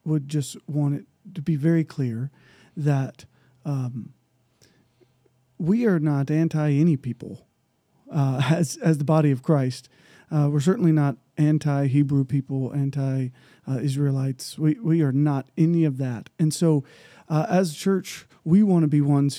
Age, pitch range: 40-59, 135-155 Hz